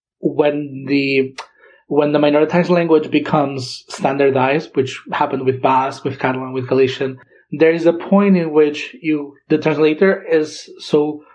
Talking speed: 145 wpm